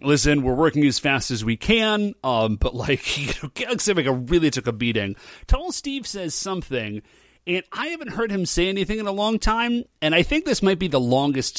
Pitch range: 130-200 Hz